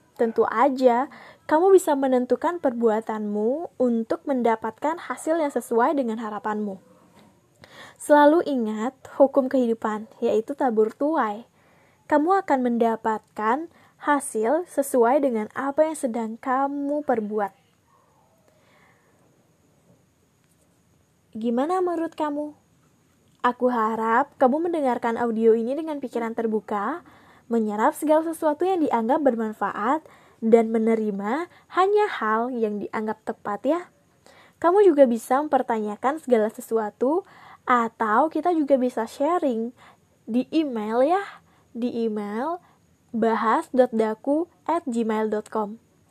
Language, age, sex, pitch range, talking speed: Indonesian, 10-29, female, 225-305 Hz, 95 wpm